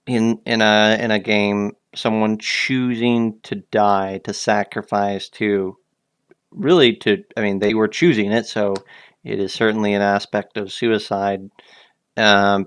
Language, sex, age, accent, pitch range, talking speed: English, male, 40-59, American, 100-115 Hz, 140 wpm